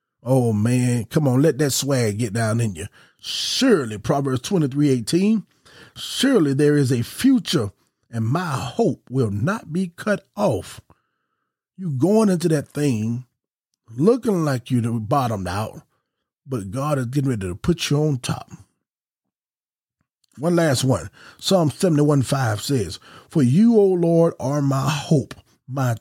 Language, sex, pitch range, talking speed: English, male, 115-150 Hz, 150 wpm